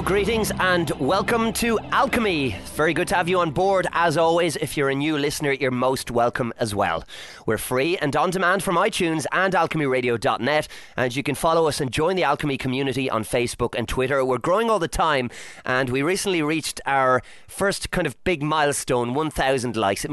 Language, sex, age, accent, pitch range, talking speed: English, male, 30-49, Irish, 125-170 Hz, 195 wpm